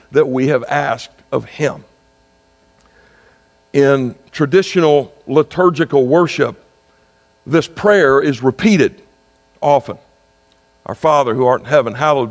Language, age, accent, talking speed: English, 60-79, American, 105 wpm